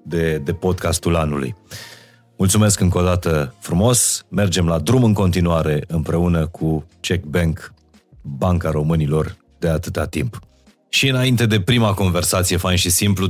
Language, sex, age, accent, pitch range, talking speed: Romanian, male, 30-49, native, 85-110 Hz, 135 wpm